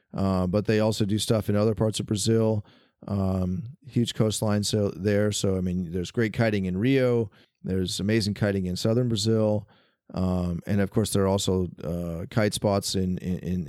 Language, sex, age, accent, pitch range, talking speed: English, male, 30-49, American, 100-120 Hz, 180 wpm